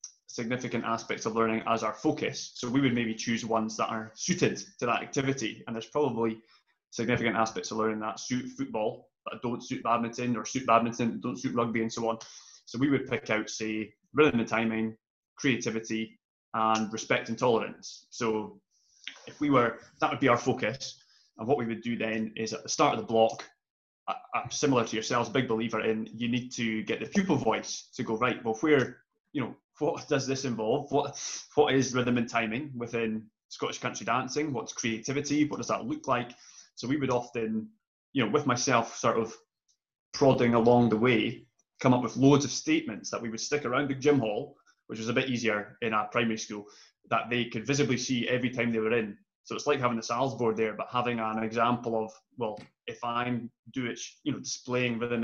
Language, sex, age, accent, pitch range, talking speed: English, male, 20-39, British, 110-130 Hz, 205 wpm